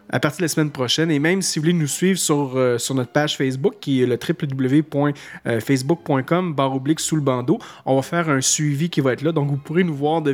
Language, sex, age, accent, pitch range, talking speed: French, male, 30-49, Canadian, 135-165 Hz, 250 wpm